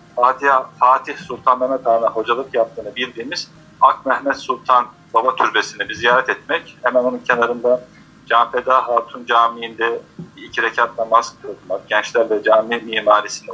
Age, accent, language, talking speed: 40-59, native, Turkish, 125 wpm